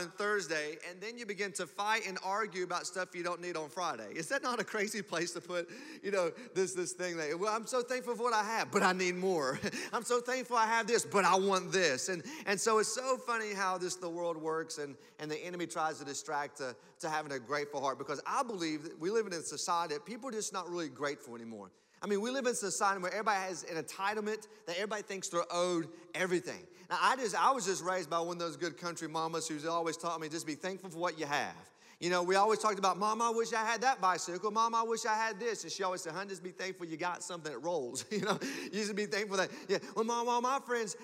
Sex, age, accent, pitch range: male, 30-49, American, 170-220 Hz